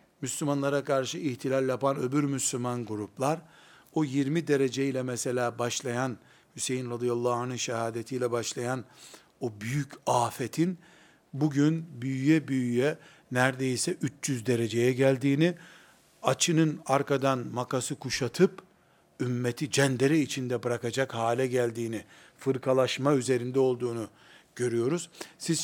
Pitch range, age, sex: 125-155 Hz, 60-79, male